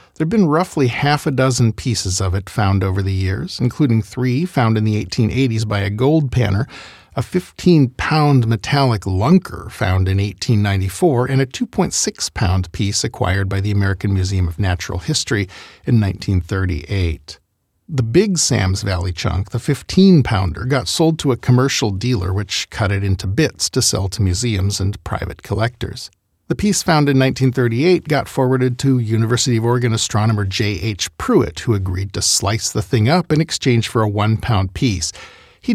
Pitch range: 100-135 Hz